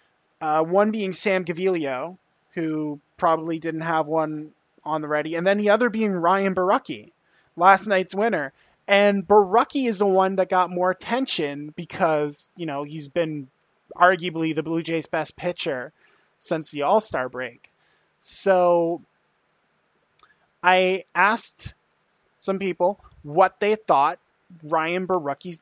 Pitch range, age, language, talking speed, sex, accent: 155-195 Hz, 20-39, English, 135 wpm, male, American